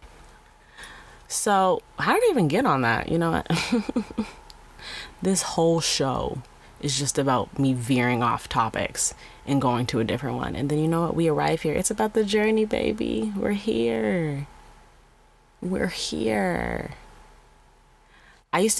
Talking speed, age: 145 wpm, 20-39